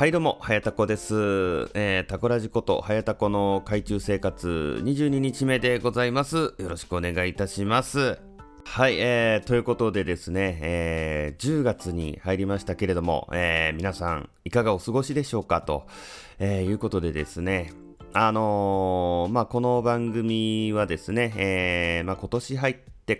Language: Japanese